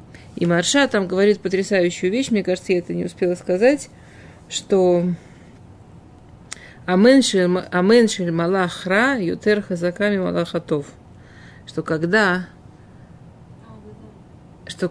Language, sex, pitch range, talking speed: Russian, female, 170-205 Hz, 85 wpm